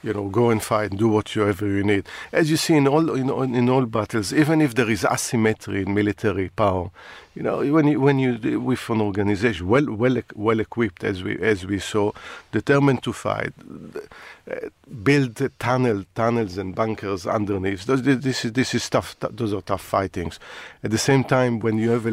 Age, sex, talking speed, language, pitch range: 50-69, male, 190 wpm, English, 105-125 Hz